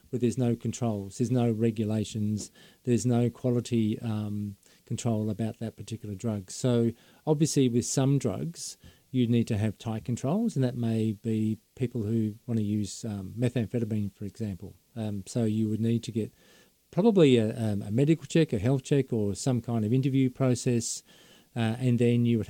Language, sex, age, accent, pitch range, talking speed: English, male, 40-59, Australian, 110-135 Hz, 175 wpm